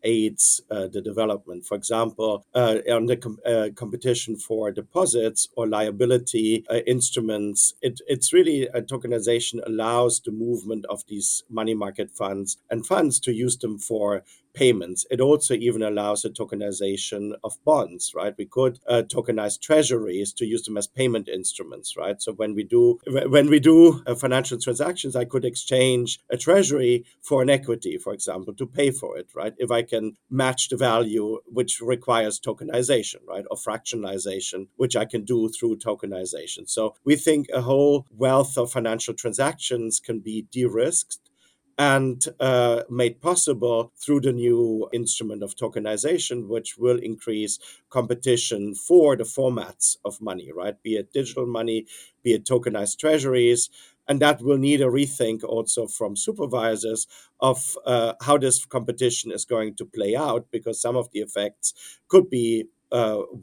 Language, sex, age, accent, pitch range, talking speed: English, male, 50-69, German, 110-130 Hz, 155 wpm